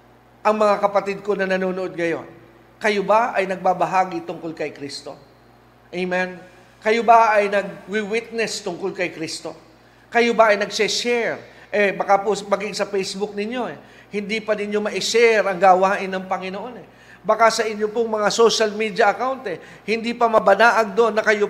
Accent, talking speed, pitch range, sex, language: native, 160 wpm, 200-245 Hz, male, Filipino